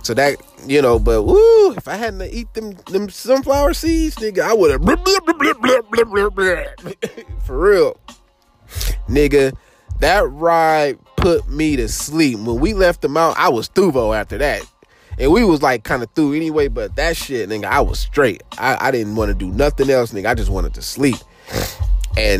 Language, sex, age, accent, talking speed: English, male, 20-39, American, 180 wpm